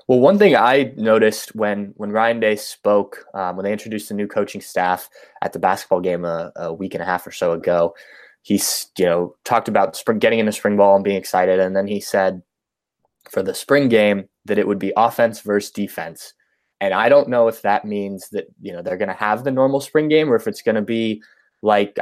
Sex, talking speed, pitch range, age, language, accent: male, 230 wpm, 100-125 Hz, 20-39, English, American